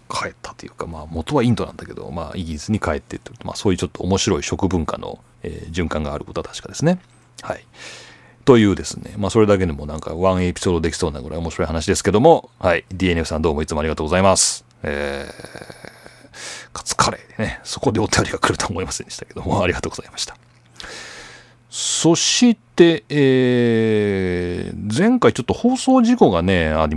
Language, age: Japanese, 40-59